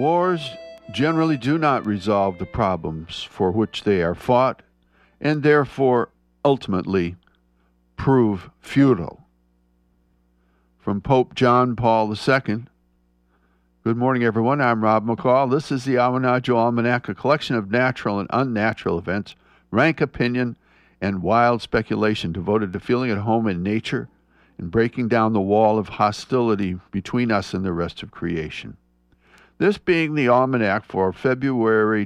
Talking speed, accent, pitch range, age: 135 wpm, American, 95-125 Hz, 60-79